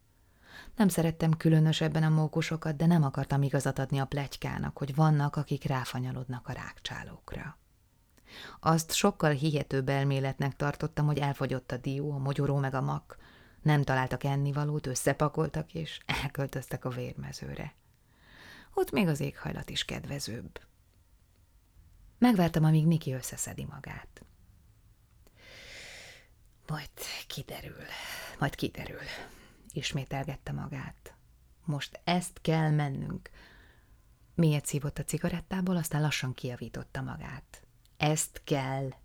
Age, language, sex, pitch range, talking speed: 30-49, Hungarian, female, 130-155 Hz, 110 wpm